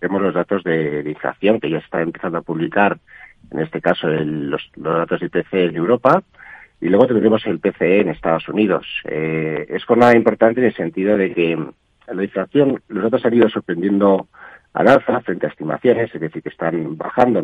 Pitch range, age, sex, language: 85-110 Hz, 50-69, male, Spanish